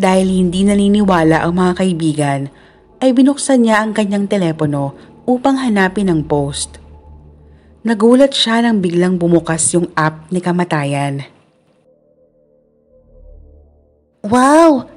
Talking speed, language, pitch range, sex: 105 wpm, Filipino, 135-215 Hz, female